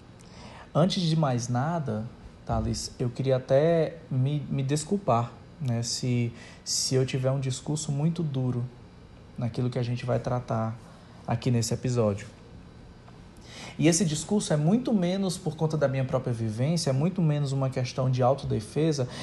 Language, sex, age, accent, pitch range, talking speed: Portuguese, male, 20-39, Brazilian, 125-160 Hz, 150 wpm